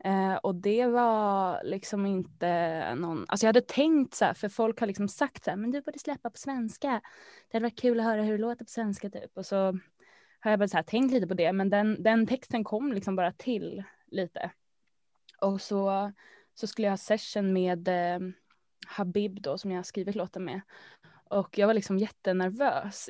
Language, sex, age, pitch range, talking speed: Swedish, female, 20-39, 190-230 Hz, 200 wpm